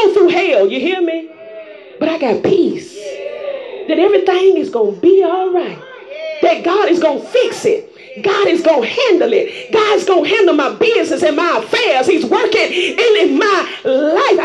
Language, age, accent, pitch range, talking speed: English, 30-49, American, 345-440 Hz, 185 wpm